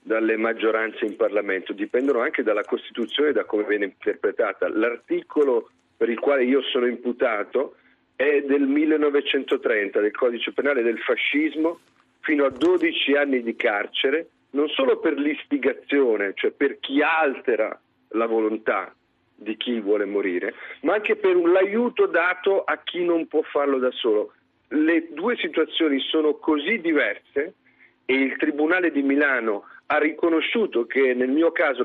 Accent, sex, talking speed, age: native, male, 145 wpm, 40-59